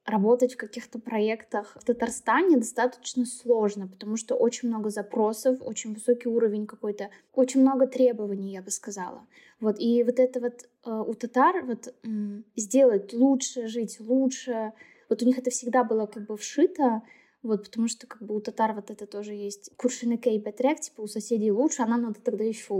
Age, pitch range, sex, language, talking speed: 10-29, 220-260 Hz, female, Russian, 180 wpm